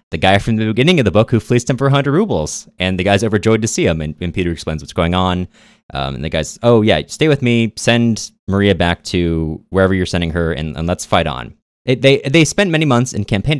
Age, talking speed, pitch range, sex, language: 20-39, 255 wpm, 80-115 Hz, male, English